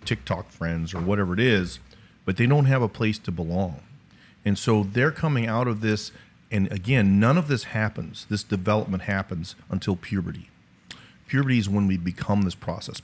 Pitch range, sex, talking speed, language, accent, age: 95-115 Hz, male, 180 wpm, English, American, 40-59